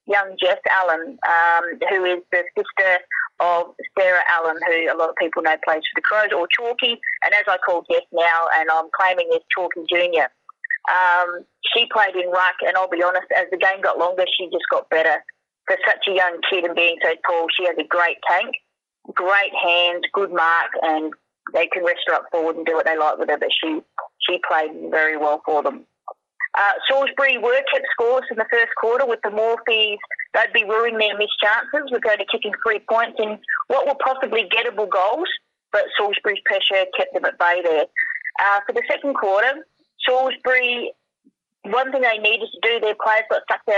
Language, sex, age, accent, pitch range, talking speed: English, female, 30-49, Australian, 175-230 Hz, 200 wpm